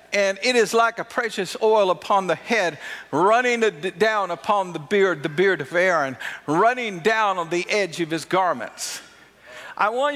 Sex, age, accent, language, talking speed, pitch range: male, 50-69, American, English, 170 wpm, 165-210 Hz